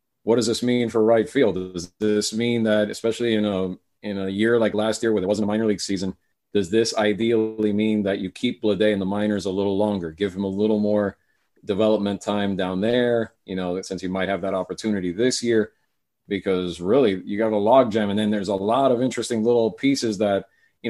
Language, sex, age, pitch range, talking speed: English, male, 40-59, 105-120 Hz, 220 wpm